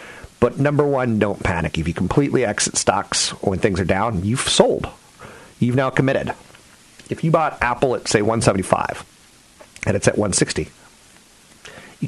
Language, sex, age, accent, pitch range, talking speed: English, male, 40-59, American, 95-130 Hz, 170 wpm